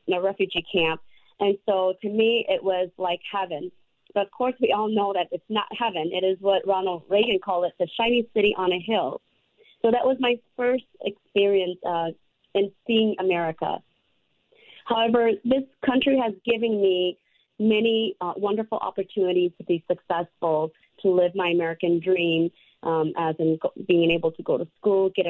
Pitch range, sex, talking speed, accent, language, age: 170-210 Hz, female, 175 wpm, American, English, 30-49